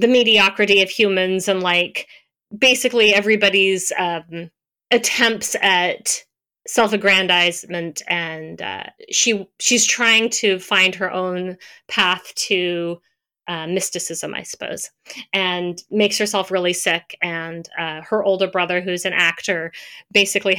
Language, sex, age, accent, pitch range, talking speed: English, female, 30-49, American, 175-225 Hz, 120 wpm